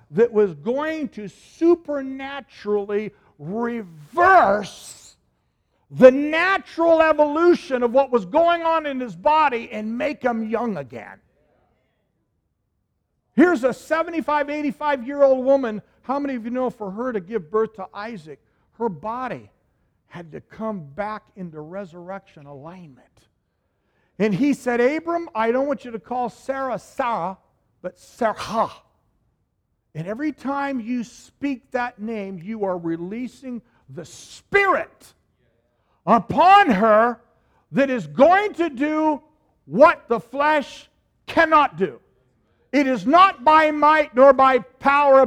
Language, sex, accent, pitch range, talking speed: English, male, American, 195-280 Hz, 125 wpm